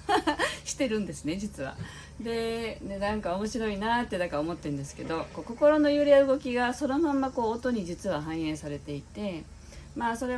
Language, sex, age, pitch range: Japanese, female, 40-59, 140-205 Hz